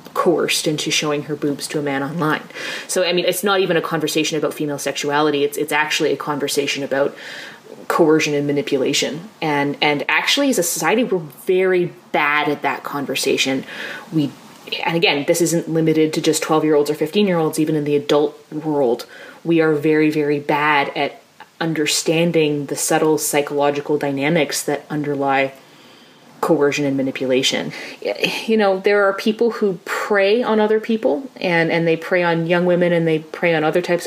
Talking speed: 170 wpm